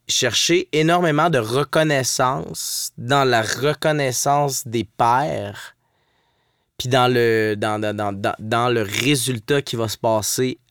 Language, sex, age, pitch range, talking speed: French, male, 30-49, 110-135 Hz, 125 wpm